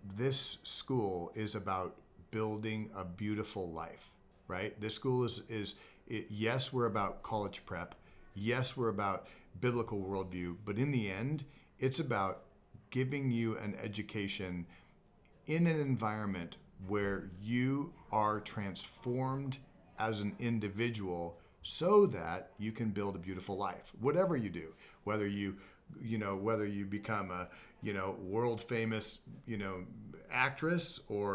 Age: 40-59